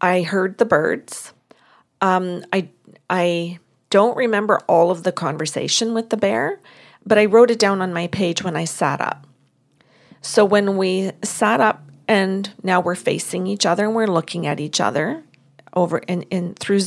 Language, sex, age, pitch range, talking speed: English, female, 40-59, 170-210 Hz, 175 wpm